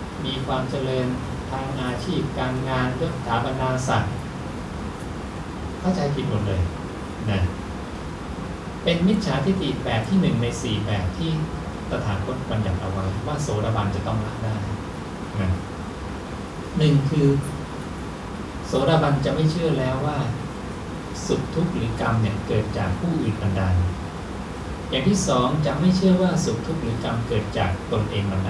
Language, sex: English, male